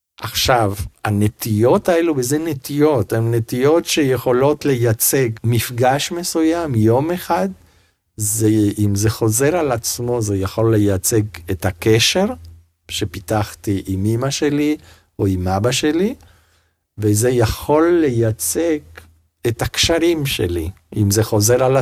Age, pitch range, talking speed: 50-69, 100-125 Hz, 115 wpm